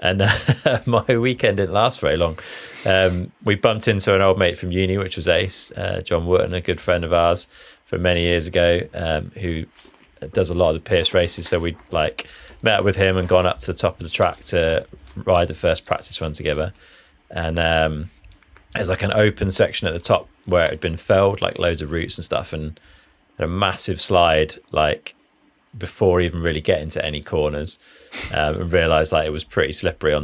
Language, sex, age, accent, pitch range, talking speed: English, male, 20-39, British, 80-100 Hz, 210 wpm